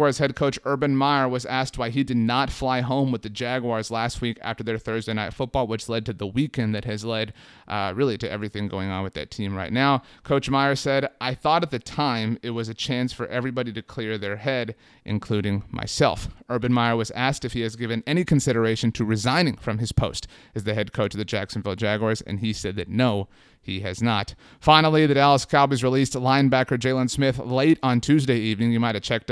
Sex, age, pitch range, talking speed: male, 30-49, 110-135 Hz, 225 wpm